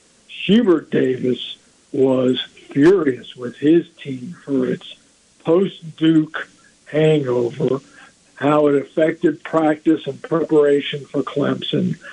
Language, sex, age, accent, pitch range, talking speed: English, male, 50-69, American, 140-160 Hz, 95 wpm